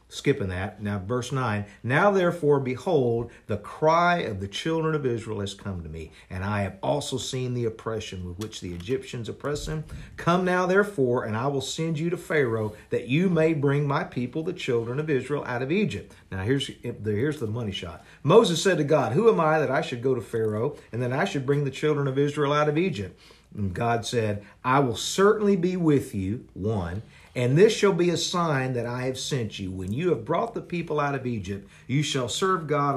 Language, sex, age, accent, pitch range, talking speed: English, male, 50-69, American, 110-155 Hz, 215 wpm